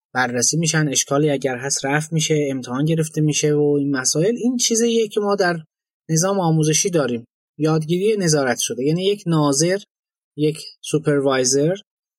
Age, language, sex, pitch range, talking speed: 20-39, Persian, male, 145-190 Hz, 145 wpm